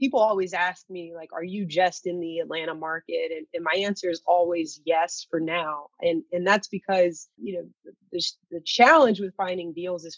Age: 30-49